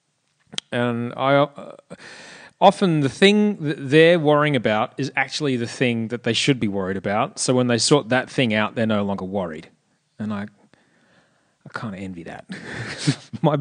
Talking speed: 170 wpm